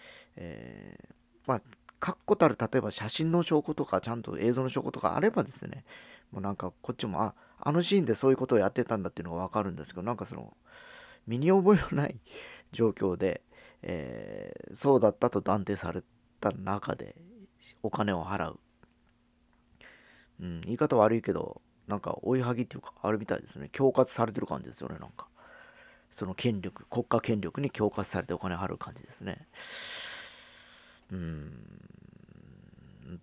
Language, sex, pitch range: Japanese, male, 100-155 Hz